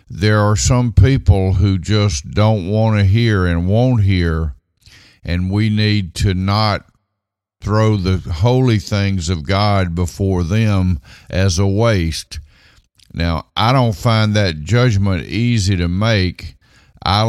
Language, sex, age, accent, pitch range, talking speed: English, male, 50-69, American, 85-105 Hz, 135 wpm